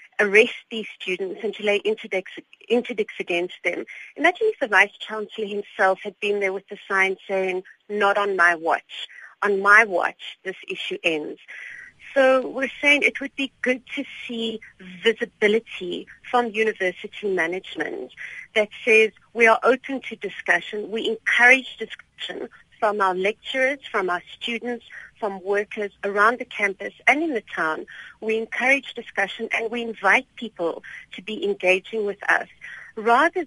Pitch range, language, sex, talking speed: 195-245 Hz, English, female, 145 wpm